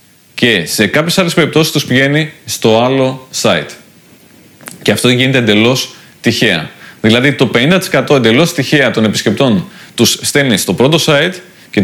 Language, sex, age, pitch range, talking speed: Greek, male, 30-49, 115-150 Hz, 140 wpm